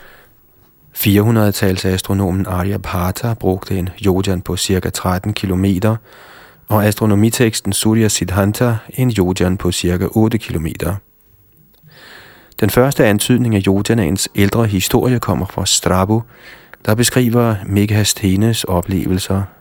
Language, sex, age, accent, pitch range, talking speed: Danish, male, 30-49, native, 90-115 Hz, 105 wpm